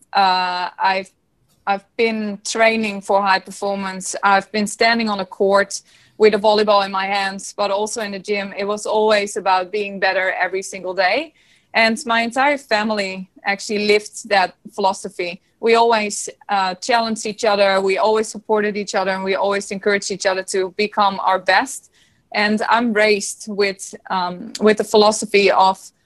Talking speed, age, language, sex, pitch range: 165 wpm, 20-39, English, female, 195-220 Hz